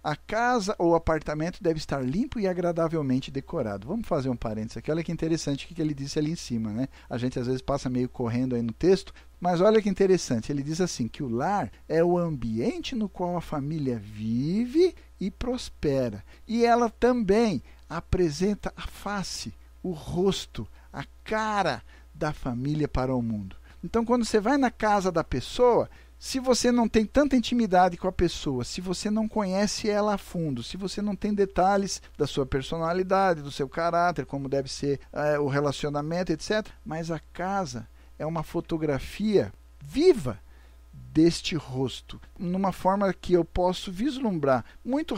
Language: Portuguese